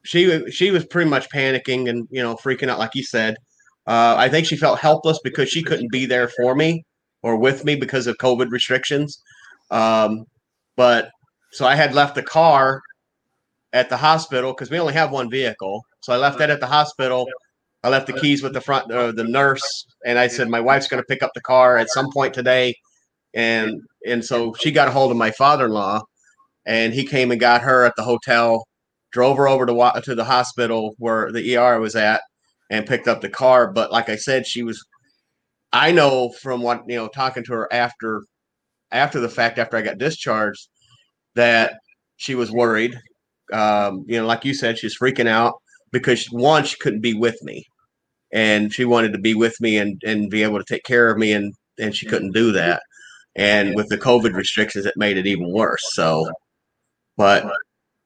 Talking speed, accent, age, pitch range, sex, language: 205 wpm, American, 30-49, 115-135 Hz, male, English